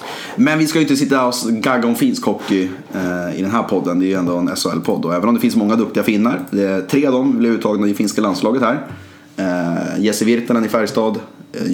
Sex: male